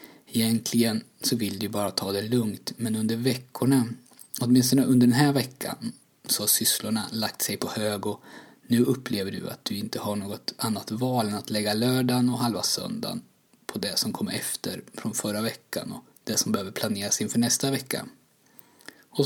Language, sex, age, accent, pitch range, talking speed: Swedish, male, 20-39, native, 110-130 Hz, 180 wpm